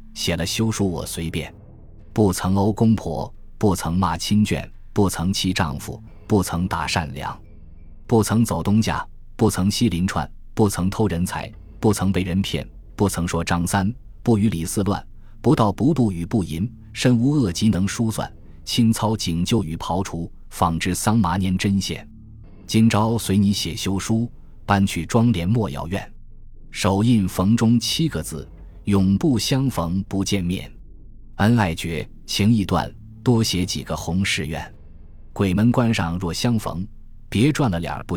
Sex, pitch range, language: male, 85-110 Hz, Chinese